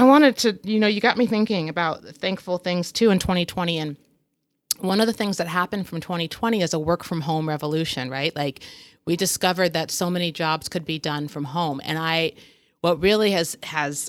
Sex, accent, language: female, American, English